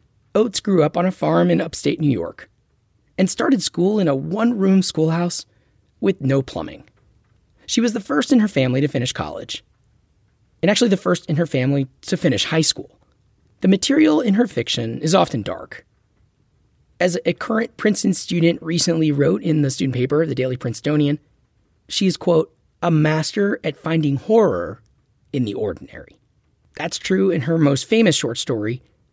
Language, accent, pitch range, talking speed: English, American, 125-180 Hz, 170 wpm